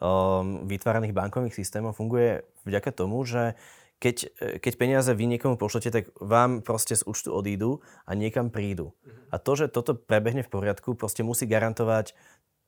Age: 20-39